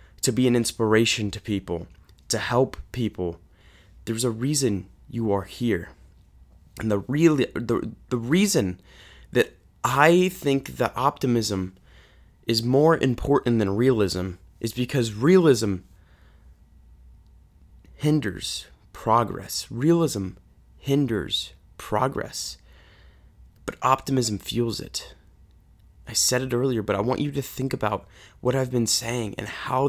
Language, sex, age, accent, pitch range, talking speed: English, male, 20-39, American, 100-145 Hz, 120 wpm